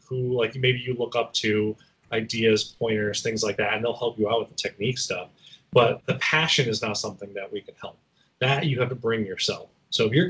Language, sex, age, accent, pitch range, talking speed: English, male, 30-49, American, 110-150 Hz, 235 wpm